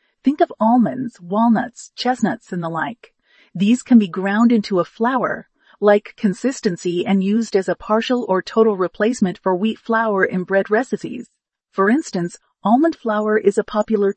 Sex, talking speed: female, 160 wpm